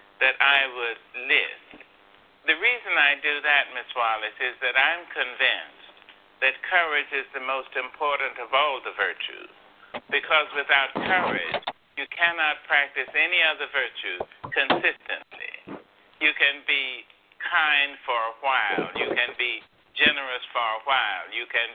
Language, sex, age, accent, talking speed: English, male, 60-79, American, 140 wpm